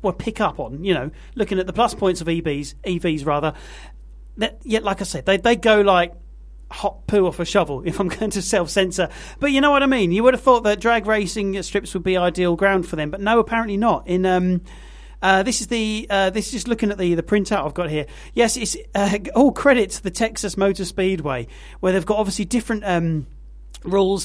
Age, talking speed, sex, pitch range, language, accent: 40-59, 235 wpm, male, 160-205 Hz, English, British